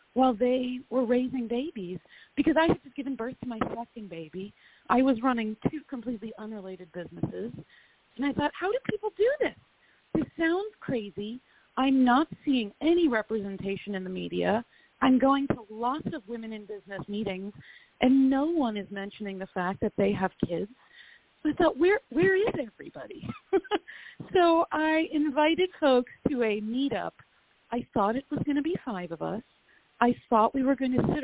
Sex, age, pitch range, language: female, 40-59, 215-300 Hz, English